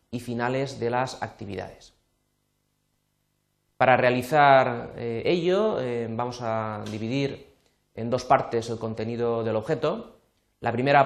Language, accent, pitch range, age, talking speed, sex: Spanish, Spanish, 110-140 Hz, 30-49, 110 wpm, male